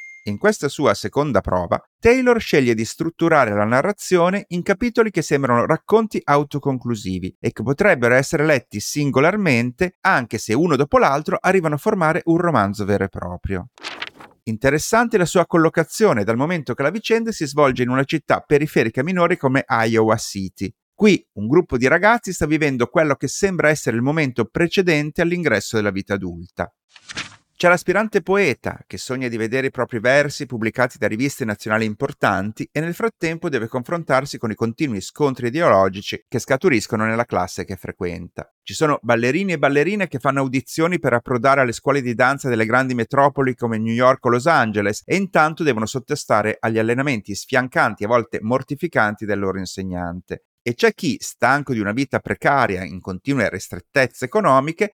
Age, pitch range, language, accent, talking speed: 30-49, 110-165 Hz, Italian, native, 165 wpm